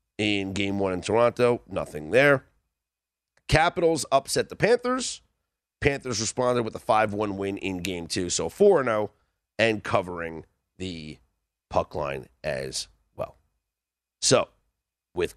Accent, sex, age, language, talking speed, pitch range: American, male, 40-59, English, 120 wpm, 95-155 Hz